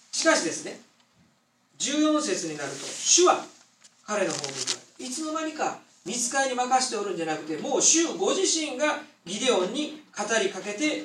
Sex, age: male, 40-59